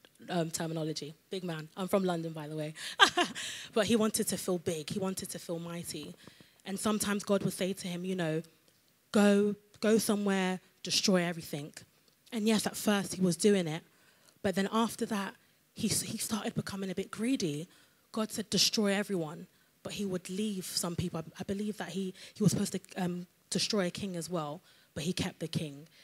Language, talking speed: English, 195 wpm